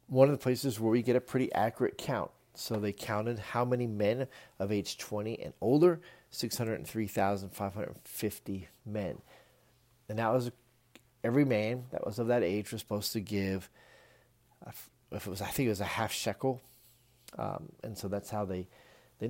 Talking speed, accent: 185 wpm, American